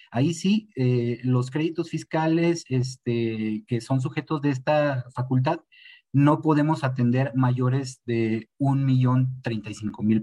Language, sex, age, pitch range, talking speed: Spanish, male, 40-59, 120-160 Hz, 125 wpm